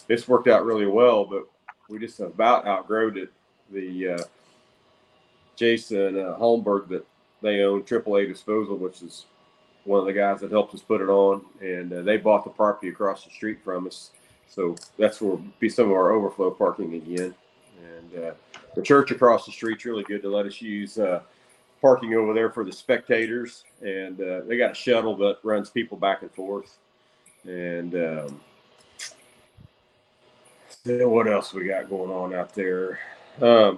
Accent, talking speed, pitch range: American, 175 wpm, 95-115 Hz